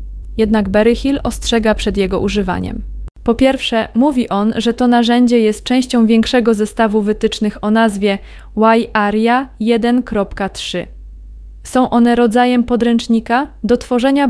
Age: 20-39